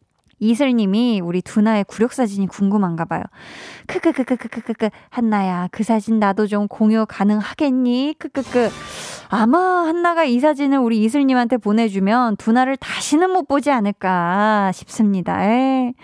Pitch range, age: 205-275 Hz, 20-39